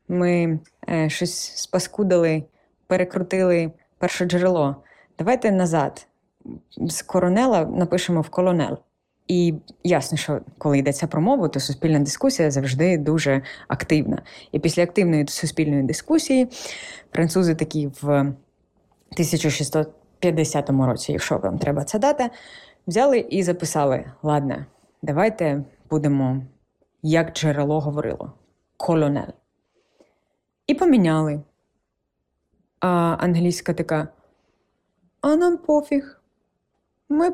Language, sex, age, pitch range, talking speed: Ukrainian, female, 20-39, 155-225 Hz, 100 wpm